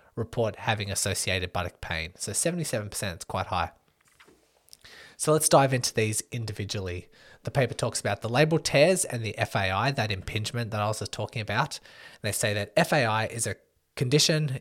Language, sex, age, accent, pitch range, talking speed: English, male, 20-39, Australian, 100-125 Hz, 175 wpm